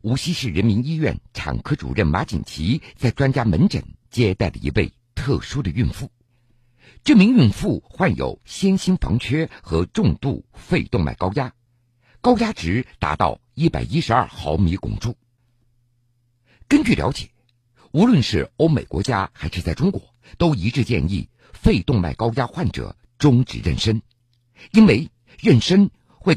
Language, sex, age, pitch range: Chinese, male, 50-69, 110-145 Hz